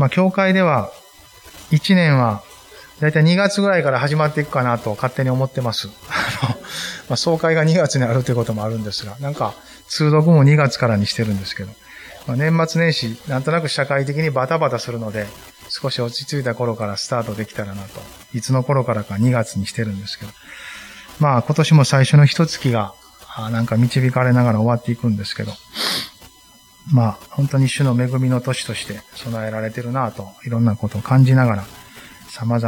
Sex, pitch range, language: male, 110-140 Hz, Japanese